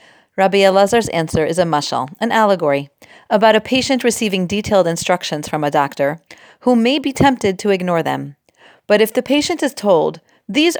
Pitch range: 165-220 Hz